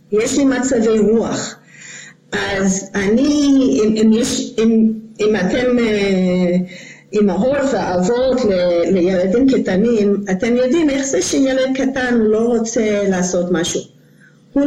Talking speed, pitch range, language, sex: 105 wpm, 205-280 Hz, English, female